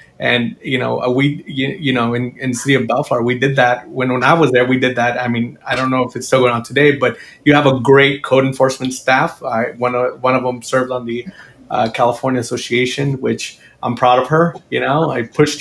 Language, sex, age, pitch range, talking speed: English, male, 30-49, 125-145 Hz, 245 wpm